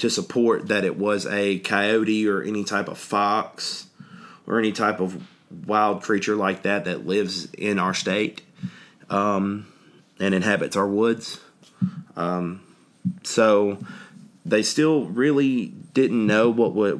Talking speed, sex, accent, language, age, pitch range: 140 wpm, male, American, English, 30-49, 95-115 Hz